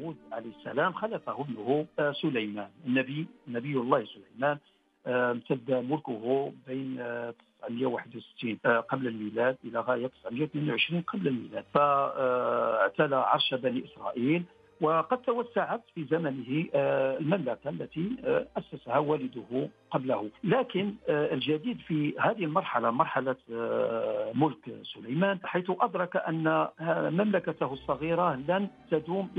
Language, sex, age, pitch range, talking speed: Arabic, male, 60-79, 130-165 Hz, 100 wpm